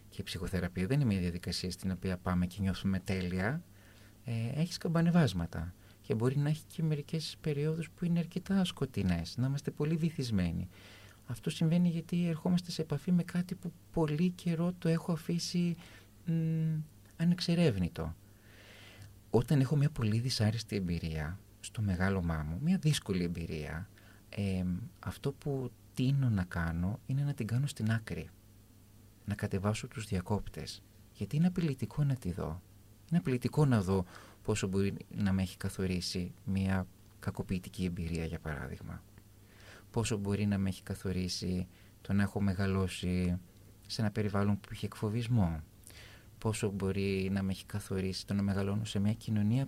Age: 30-49